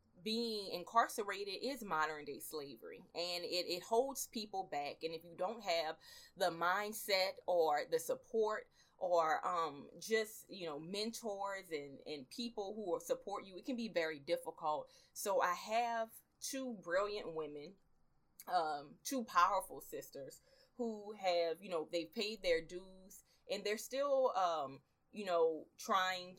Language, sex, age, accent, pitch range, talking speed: English, female, 20-39, American, 170-235 Hz, 150 wpm